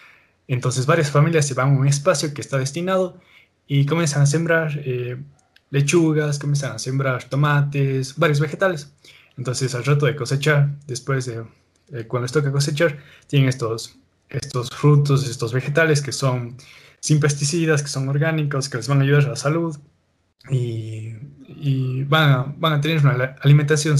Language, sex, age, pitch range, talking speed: Spanish, male, 20-39, 125-150 Hz, 165 wpm